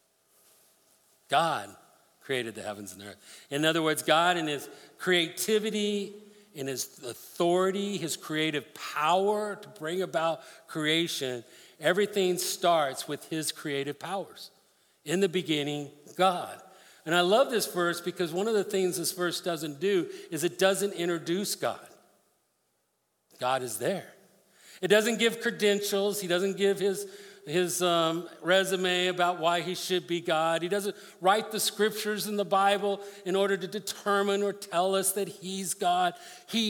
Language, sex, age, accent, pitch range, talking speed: English, male, 50-69, American, 165-200 Hz, 150 wpm